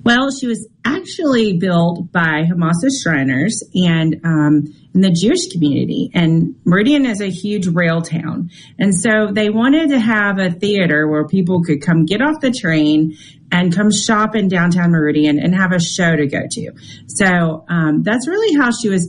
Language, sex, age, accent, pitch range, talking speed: English, female, 40-59, American, 155-210 Hz, 180 wpm